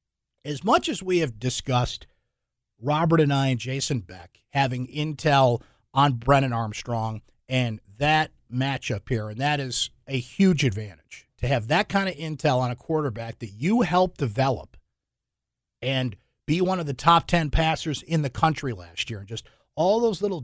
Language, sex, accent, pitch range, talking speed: English, male, American, 120-155 Hz, 170 wpm